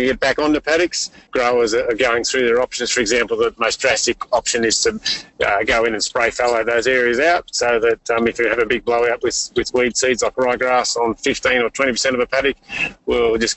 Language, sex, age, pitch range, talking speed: English, male, 30-49, 115-160 Hz, 225 wpm